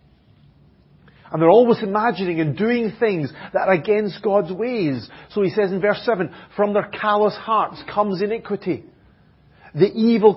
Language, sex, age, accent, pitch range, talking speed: English, male, 40-59, British, 140-205 Hz, 150 wpm